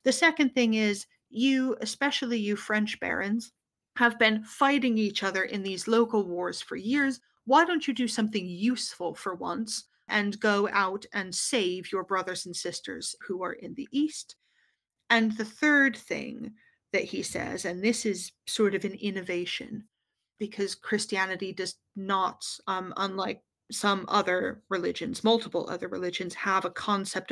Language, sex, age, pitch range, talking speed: English, female, 30-49, 195-240 Hz, 155 wpm